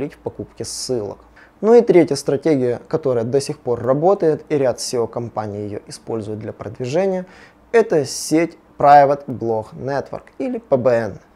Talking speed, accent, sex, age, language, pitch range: 145 wpm, native, male, 20-39, Russian, 125-180 Hz